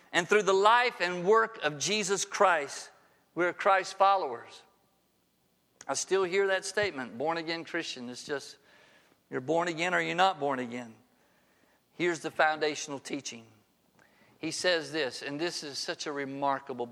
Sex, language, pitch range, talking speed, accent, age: male, English, 135-175 Hz, 155 wpm, American, 50-69